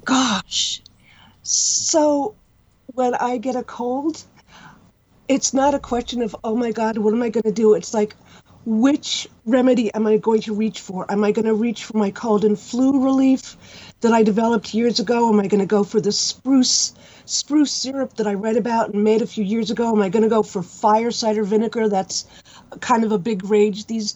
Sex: female